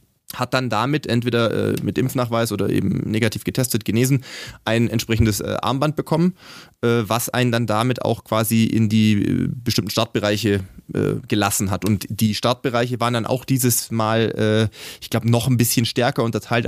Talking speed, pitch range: 175 wpm, 110-125 Hz